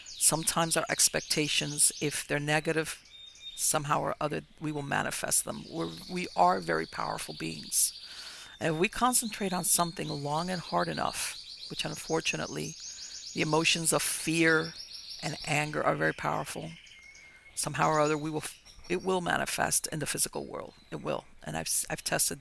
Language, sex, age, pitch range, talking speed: English, female, 50-69, 150-180 Hz, 150 wpm